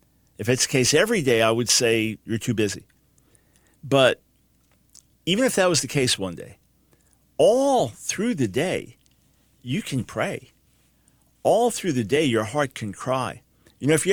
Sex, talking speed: male, 170 wpm